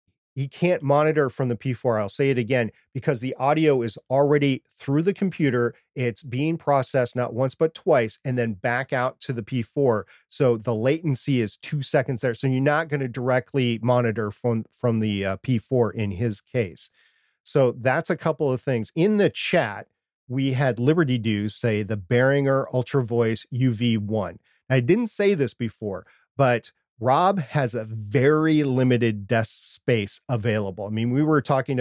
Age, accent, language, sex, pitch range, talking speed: 40-59, American, English, male, 115-140 Hz, 175 wpm